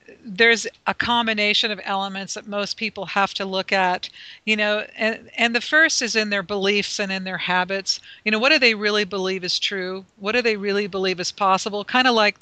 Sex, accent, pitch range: female, American, 195-235 Hz